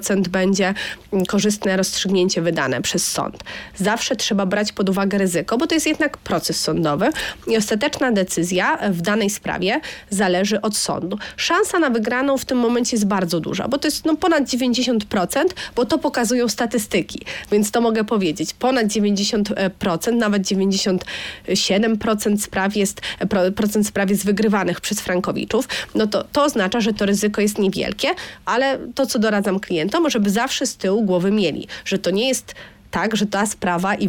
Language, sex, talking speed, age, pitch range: Polish, female, 155 wpm, 30-49, 185-230 Hz